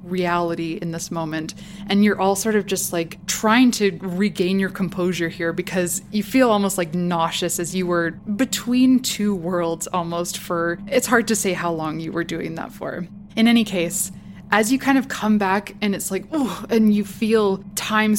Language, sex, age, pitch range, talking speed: English, female, 20-39, 180-210 Hz, 195 wpm